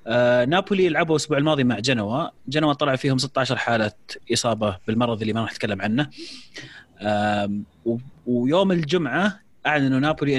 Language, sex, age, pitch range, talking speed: Arabic, male, 30-49, 120-175 Hz, 125 wpm